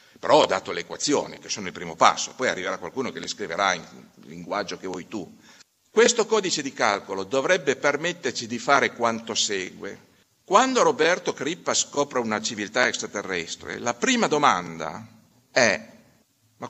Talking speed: 155 wpm